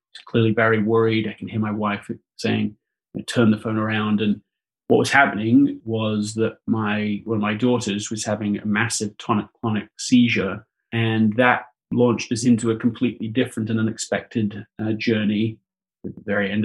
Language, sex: English, male